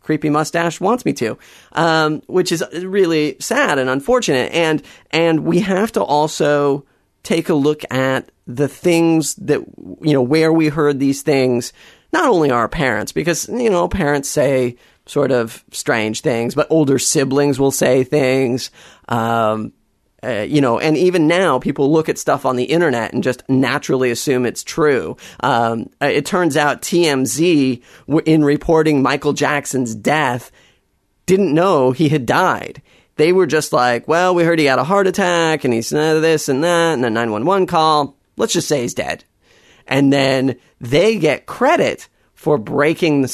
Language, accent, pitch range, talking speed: English, American, 130-160 Hz, 170 wpm